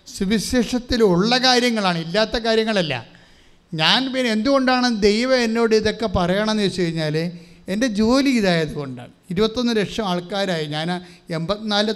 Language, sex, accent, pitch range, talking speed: English, male, Indian, 165-210 Hz, 180 wpm